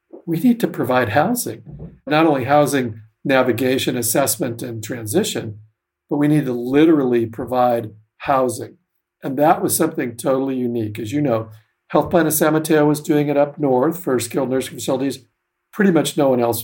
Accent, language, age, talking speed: American, English, 50-69, 170 wpm